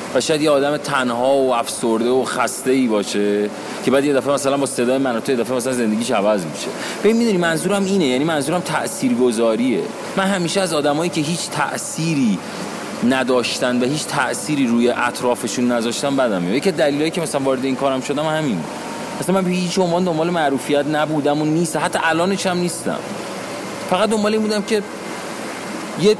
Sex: male